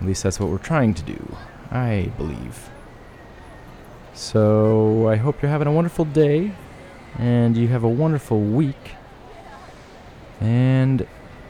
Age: 20-39